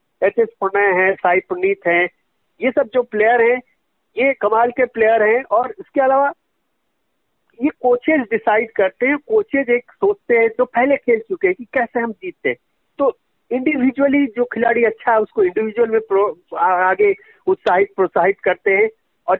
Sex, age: male, 50-69